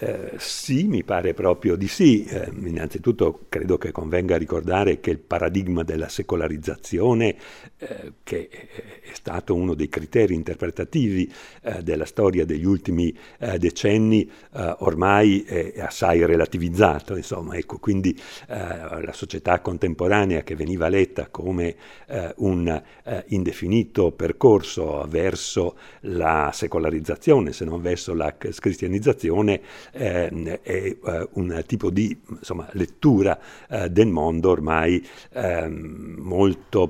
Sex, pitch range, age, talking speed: male, 80-100 Hz, 60-79, 120 wpm